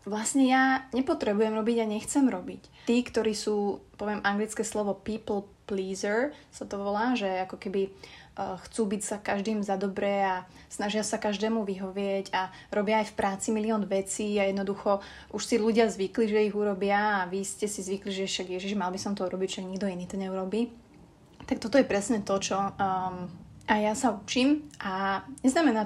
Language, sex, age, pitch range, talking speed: Slovak, female, 30-49, 195-225 Hz, 185 wpm